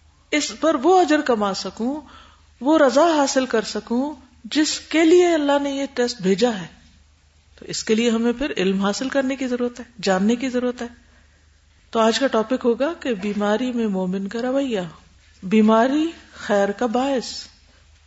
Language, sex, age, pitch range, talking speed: Urdu, female, 50-69, 175-250 Hz, 170 wpm